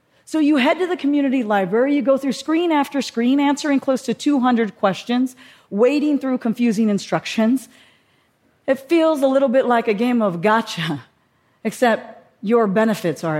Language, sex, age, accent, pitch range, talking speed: English, female, 40-59, American, 190-260 Hz, 160 wpm